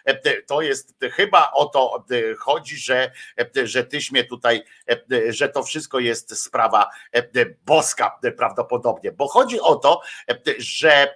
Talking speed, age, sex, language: 125 wpm, 50-69, male, Polish